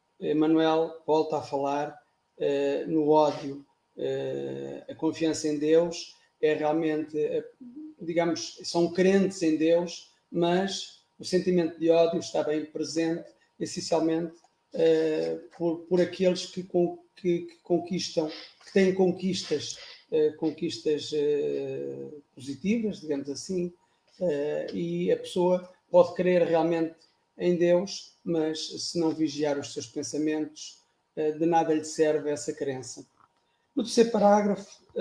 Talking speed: 125 wpm